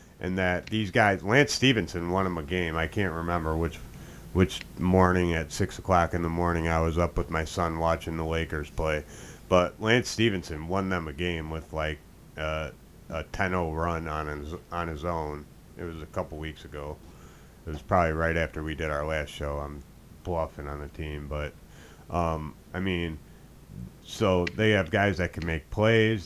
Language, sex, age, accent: English, male, 30-49, American